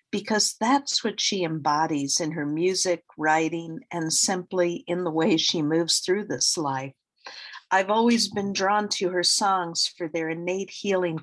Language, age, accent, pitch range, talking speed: English, 50-69, American, 160-190 Hz, 160 wpm